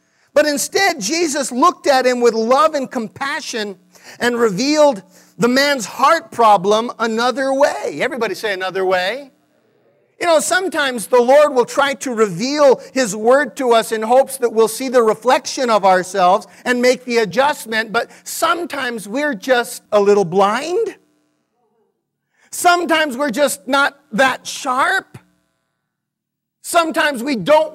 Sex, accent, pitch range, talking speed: male, American, 215-295 Hz, 140 wpm